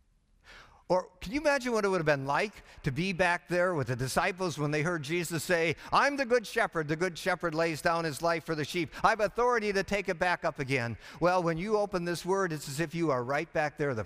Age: 50-69